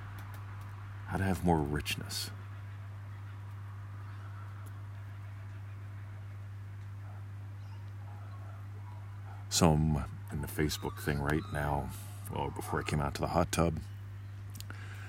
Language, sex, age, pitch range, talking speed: English, male, 50-69, 85-100 Hz, 90 wpm